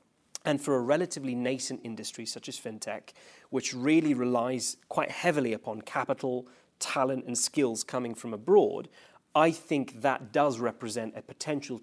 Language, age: English, 30-49